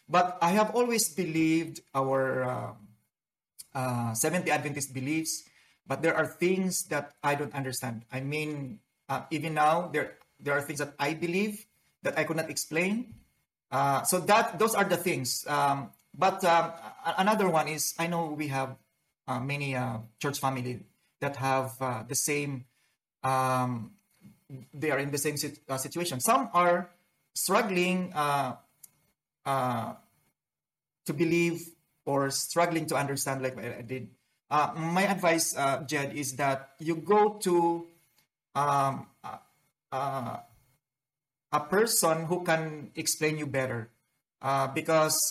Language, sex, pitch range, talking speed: English, male, 135-170 Hz, 145 wpm